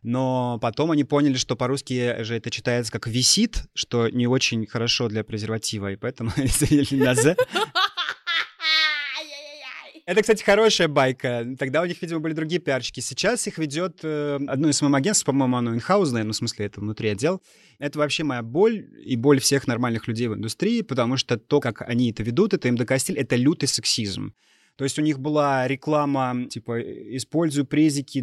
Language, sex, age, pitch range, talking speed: Russian, male, 30-49, 120-150 Hz, 175 wpm